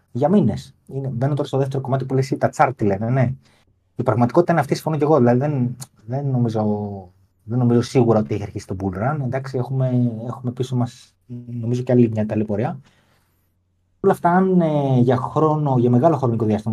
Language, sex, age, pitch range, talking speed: Greek, male, 30-49, 105-145 Hz, 190 wpm